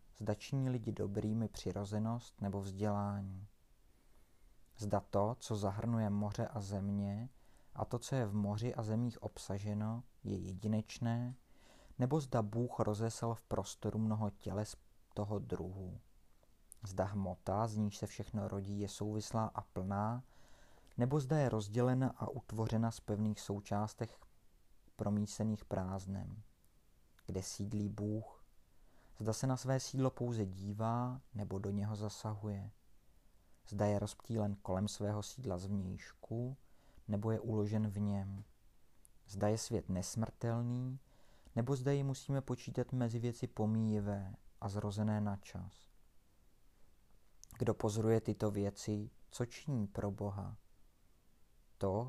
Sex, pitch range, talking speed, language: male, 100-115 Hz, 125 wpm, Czech